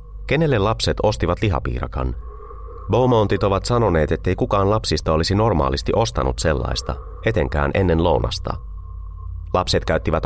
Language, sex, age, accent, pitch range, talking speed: Finnish, male, 30-49, native, 70-100 Hz, 115 wpm